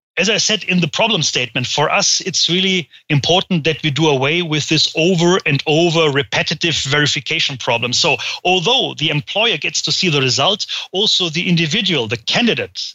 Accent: German